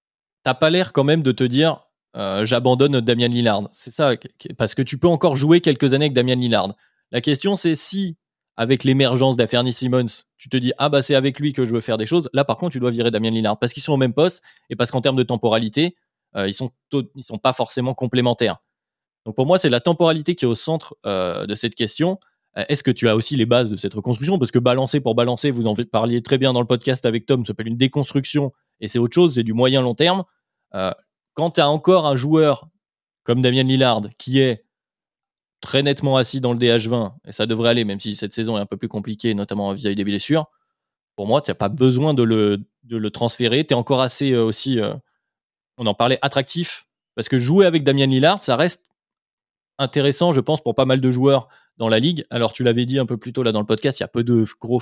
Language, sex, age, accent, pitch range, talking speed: French, male, 20-39, French, 115-140 Hz, 245 wpm